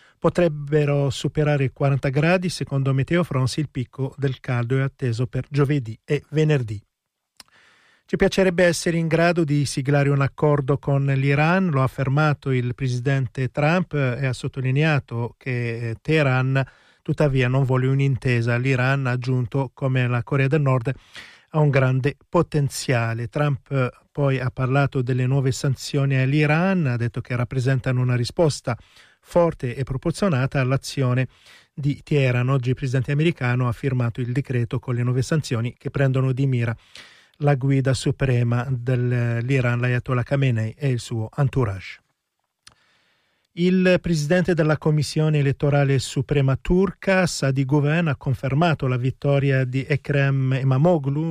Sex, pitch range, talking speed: male, 125-145 Hz, 140 wpm